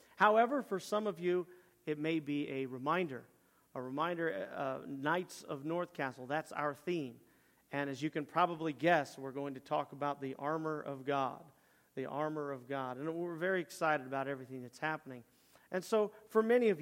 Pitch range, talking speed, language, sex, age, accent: 135-165 Hz, 185 wpm, English, male, 40-59, American